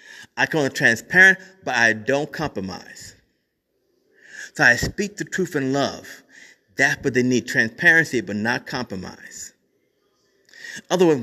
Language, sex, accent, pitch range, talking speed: English, male, American, 125-170 Hz, 130 wpm